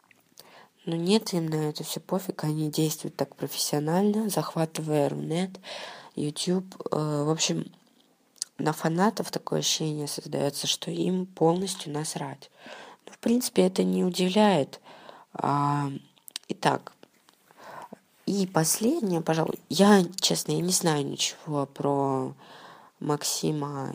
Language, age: Russian, 20-39